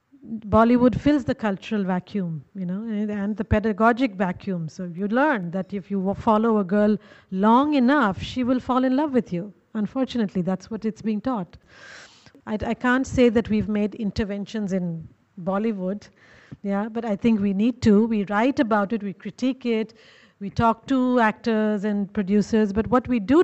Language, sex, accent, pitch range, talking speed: English, female, Indian, 200-250 Hz, 180 wpm